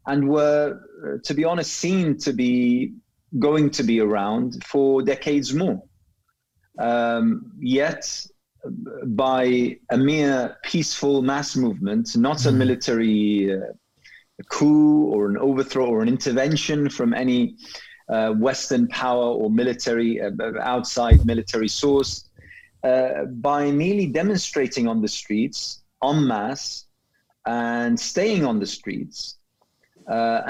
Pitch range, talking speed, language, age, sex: 120-155 Hz, 120 wpm, English, 30-49, male